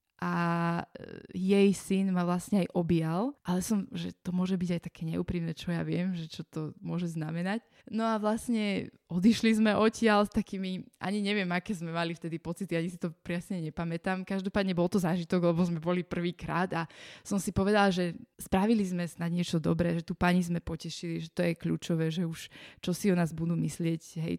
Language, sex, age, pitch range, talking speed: Slovak, female, 20-39, 170-200 Hz, 195 wpm